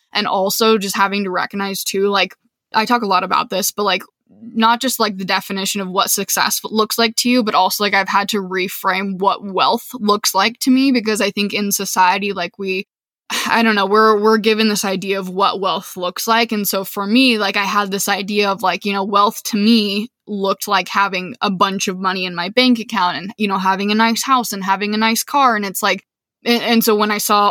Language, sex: English, female